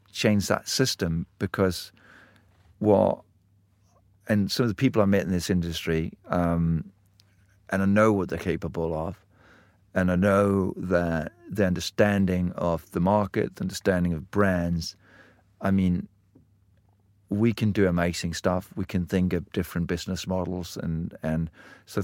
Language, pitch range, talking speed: English, 90-100 Hz, 145 wpm